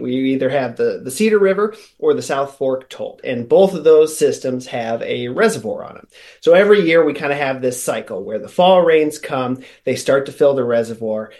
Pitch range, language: 130-180 Hz, English